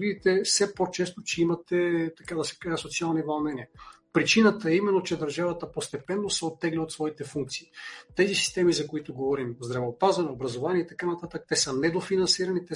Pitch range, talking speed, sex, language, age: 150-185 Hz, 170 wpm, male, Bulgarian, 40-59